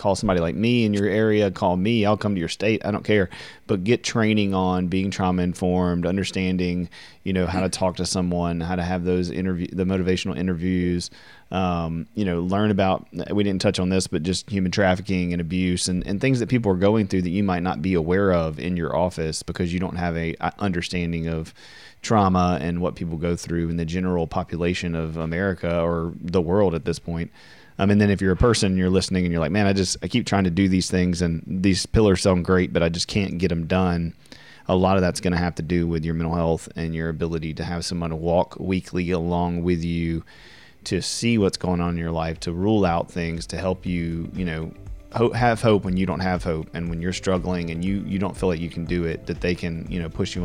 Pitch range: 85-95 Hz